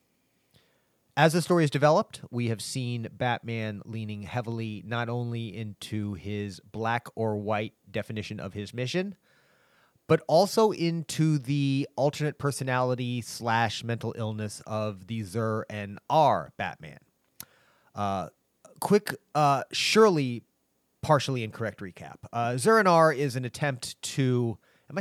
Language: English